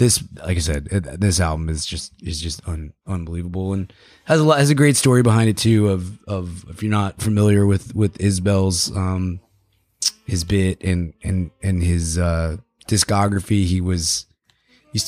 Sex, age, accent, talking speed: male, 20-39, American, 170 wpm